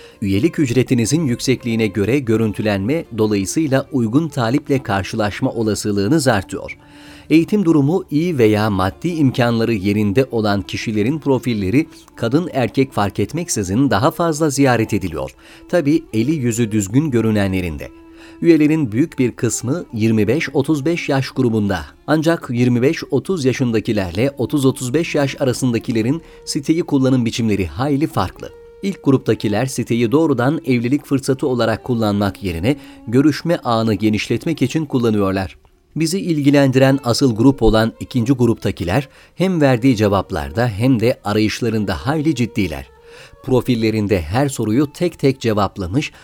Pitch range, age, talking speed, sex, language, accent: 110-145 Hz, 40-59, 115 wpm, male, Turkish, native